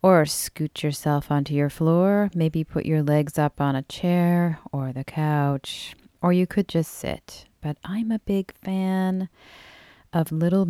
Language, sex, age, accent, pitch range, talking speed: English, female, 40-59, American, 145-185 Hz, 165 wpm